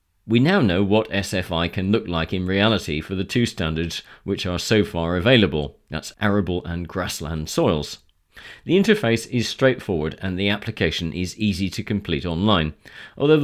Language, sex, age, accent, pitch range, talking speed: English, male, 40-59, British, 85-120 Hz, 165 wpm